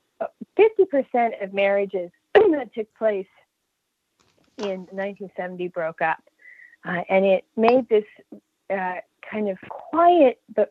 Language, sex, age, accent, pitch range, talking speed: English, female, 40-59, American, 180-225 Hz, 110 wpm